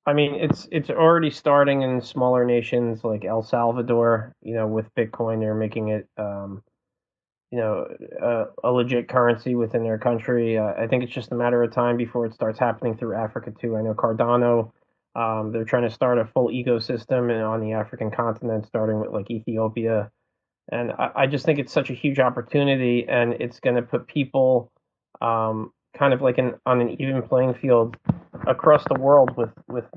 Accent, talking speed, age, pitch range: American, 190 wpm, 20-39, 110-125 Hz